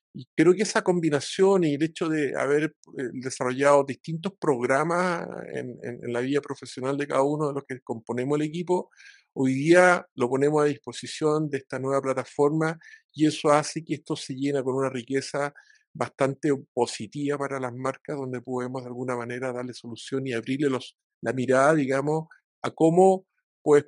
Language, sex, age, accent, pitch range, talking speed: Spanish, male, 50-69, Argentinian, 125-155 Hz, 175 wpm